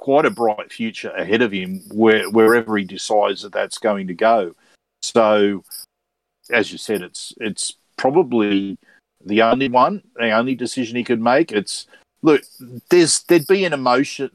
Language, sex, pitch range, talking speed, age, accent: English, male, 100-125 Hz, 165 wpm, 50-69, Australian